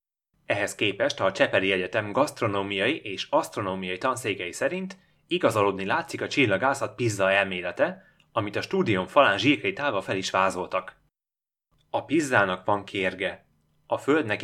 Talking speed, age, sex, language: 130 wpm, 30-49, male, Hungarian